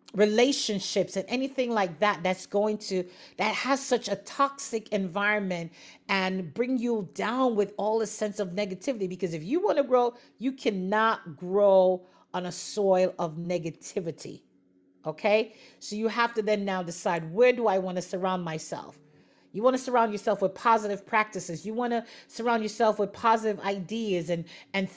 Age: 40-59